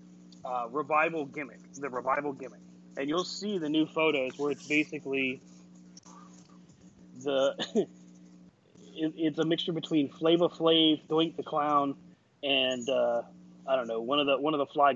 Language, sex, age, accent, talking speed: English, male, 30-49, American, 145 wpm